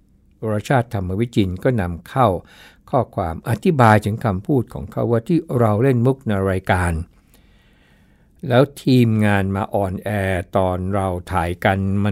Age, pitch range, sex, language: 60-79, 85-110 Hz, male, Thai